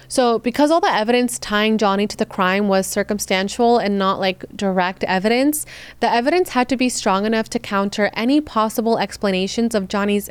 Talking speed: 180 wpm